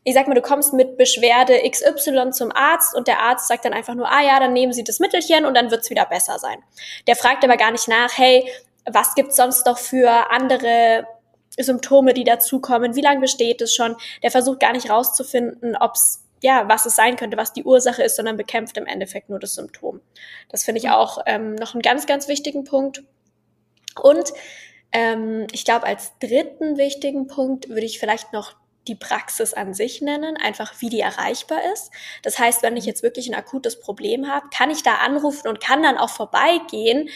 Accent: German